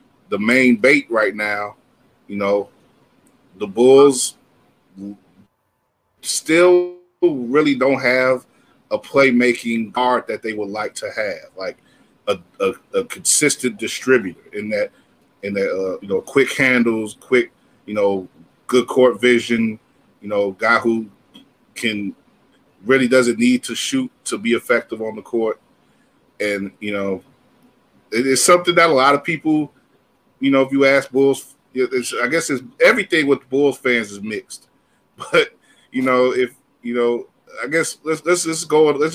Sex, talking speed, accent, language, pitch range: male, 150 wpm, American, English, 115-150 Hz